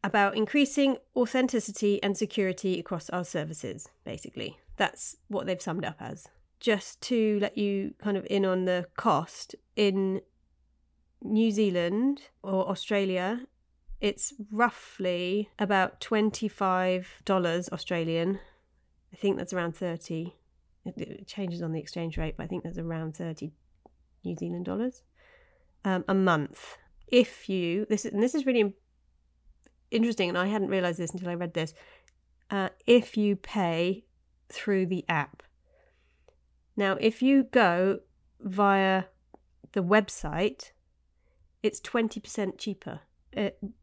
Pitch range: 165-210 Hz